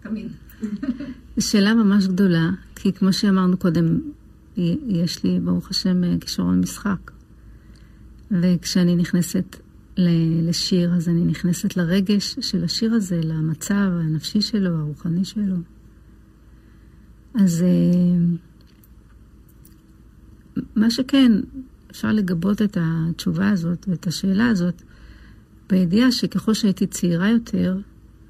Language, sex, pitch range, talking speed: Hebrew, female, 175-220 Hz, 95 wpm